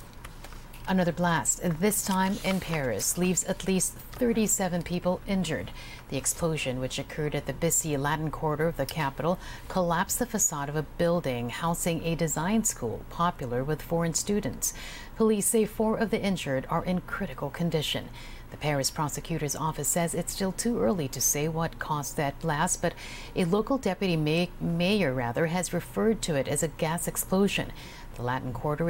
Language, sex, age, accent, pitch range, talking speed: English, female, 50-69, American, 145-185 Hz, 170 wpm